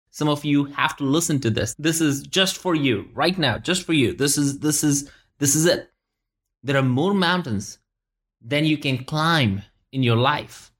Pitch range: 125-180 Hz